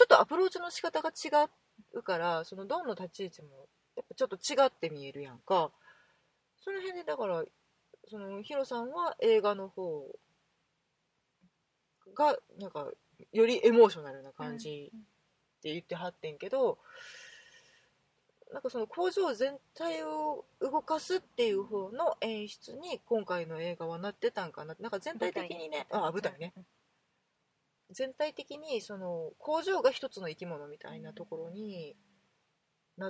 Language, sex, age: Japanese, female, 30-49